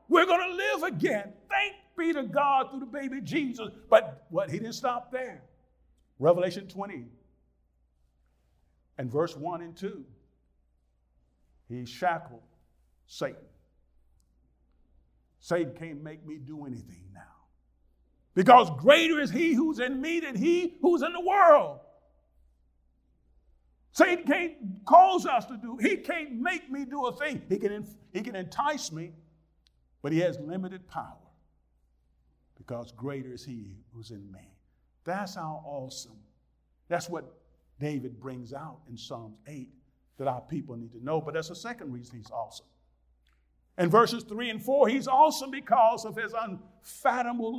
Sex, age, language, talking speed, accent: male, 50-69, English, 145 wpm, American